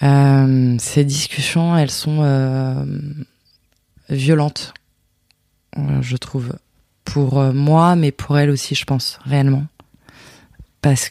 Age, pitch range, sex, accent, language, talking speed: 20-39, 125-150 Hz, female, French, French, 105 wpm